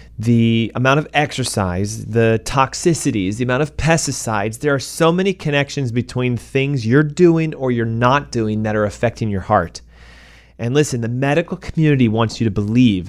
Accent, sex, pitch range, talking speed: American, male, 105-145 Hz, 170 wpm